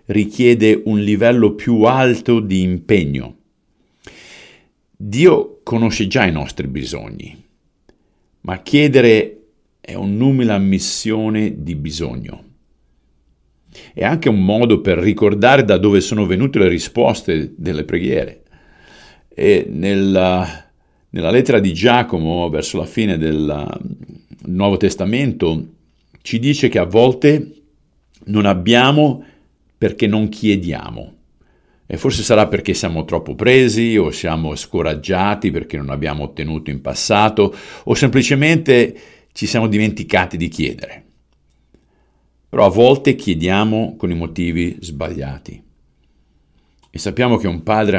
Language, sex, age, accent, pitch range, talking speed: Italian, male, 50-69, native, 80-115 Hz, 115 wpm